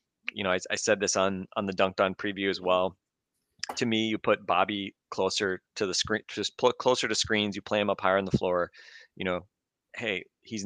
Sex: male